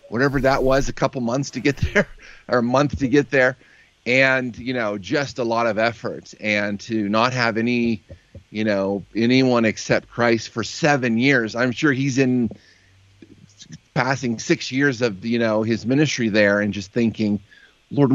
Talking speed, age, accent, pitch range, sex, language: 175 wpm, 30-49, American, 105-125 Hz, male, English